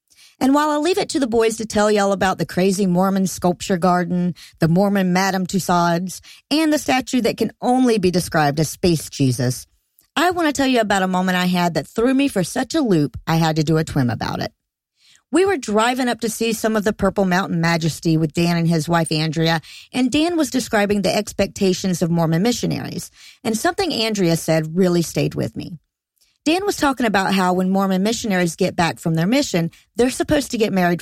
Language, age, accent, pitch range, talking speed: English, 40-59, American, 165-230 Hz, 215 wpm